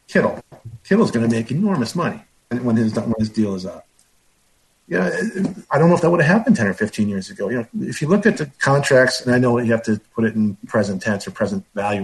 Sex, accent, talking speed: male, American, 255 wpm